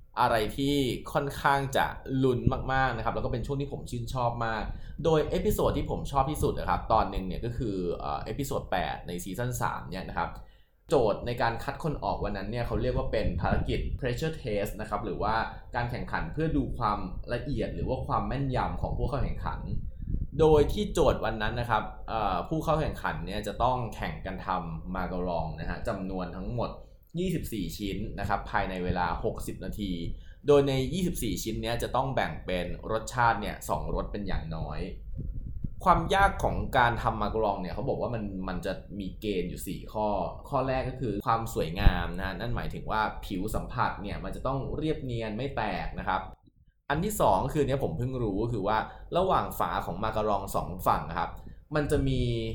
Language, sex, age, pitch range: Thai, male, 20-39, 95-130 Hz